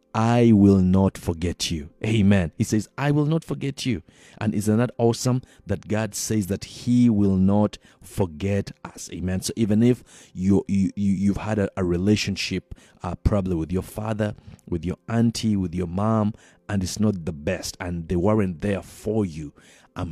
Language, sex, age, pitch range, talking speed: English, male, 50-69, 90-115 Hz, 180 wpm